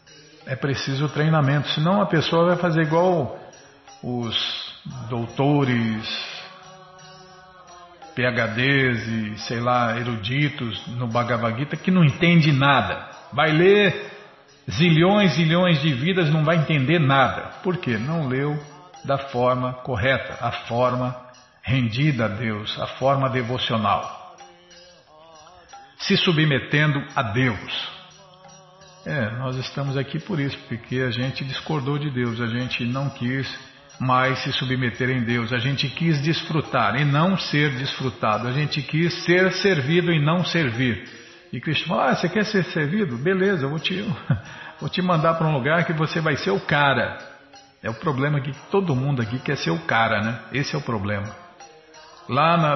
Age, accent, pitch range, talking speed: 50-69, Brazilian, 125-170 Hz, 150 wpm